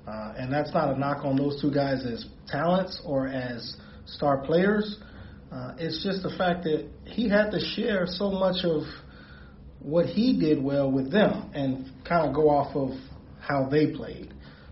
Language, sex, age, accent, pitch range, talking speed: English, male, 30-49, American, 125-155 Hz, 180 wpm